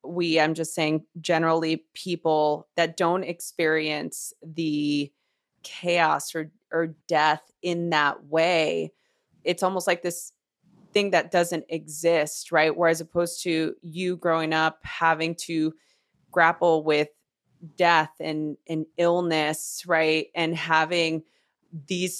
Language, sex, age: English, female, 20-39